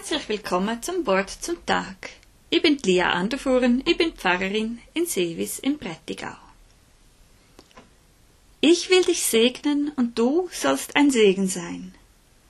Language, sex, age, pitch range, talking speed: German, female, 20-39, 185-270 Hz, 130 wpm